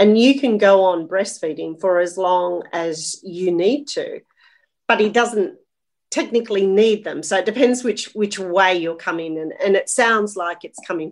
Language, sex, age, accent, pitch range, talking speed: English, female, 40-59, Australian, 170-230 Hz, 190 wpm